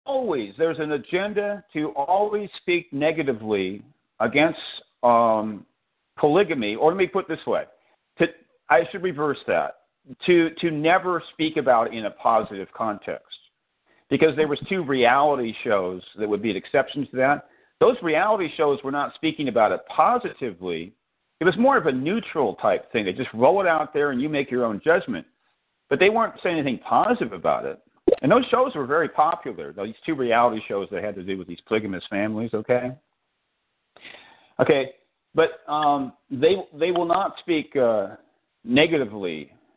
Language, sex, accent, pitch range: English, male, American, 120-160 Hz